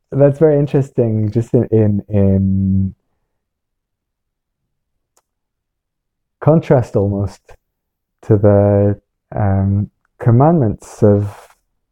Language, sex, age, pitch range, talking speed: English, male, 20-39, 105-140 Hz, 70 wpm